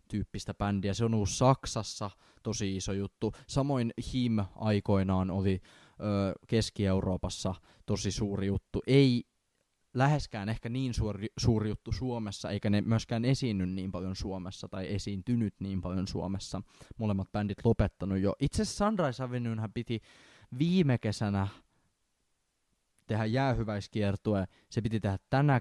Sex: male